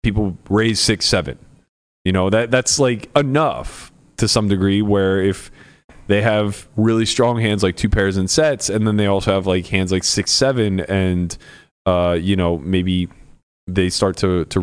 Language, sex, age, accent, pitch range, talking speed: English, male, 20-39, American, 95-125 Hz, 180 wpm